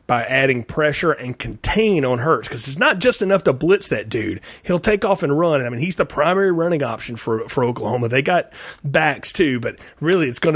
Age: 30-49